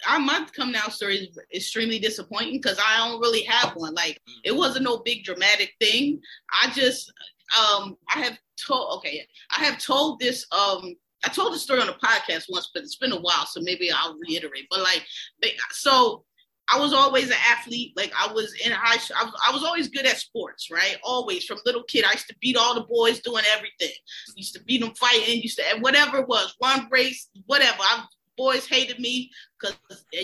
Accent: American